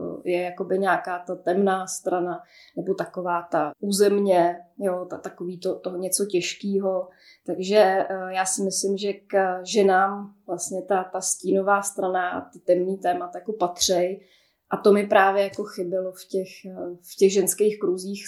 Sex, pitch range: female, 175-195 Hz